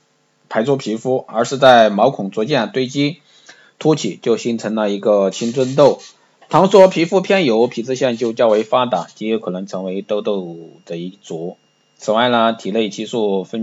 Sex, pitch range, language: male, 105-145 Hz, Chinese